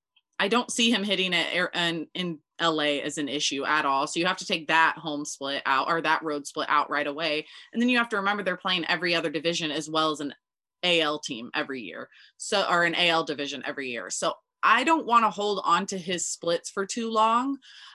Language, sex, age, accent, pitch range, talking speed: English, female, 20-39, American, 155-195 Hz, 225 wpm